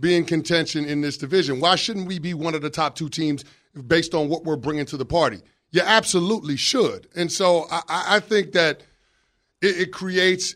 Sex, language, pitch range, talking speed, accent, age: male, English, 150-185 Hz, 200 wpm, American, 30-49